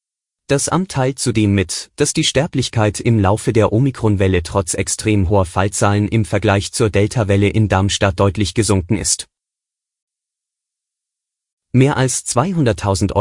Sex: male